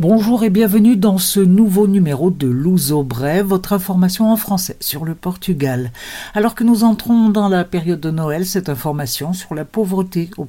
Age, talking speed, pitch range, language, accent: 60-79, 185 wpm, 140-190 Hz, Portuguese, French